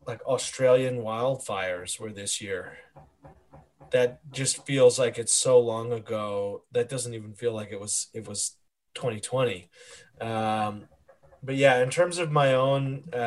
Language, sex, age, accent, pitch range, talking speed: English, male, 20-39, American, 115-150 Hz, 145 wpm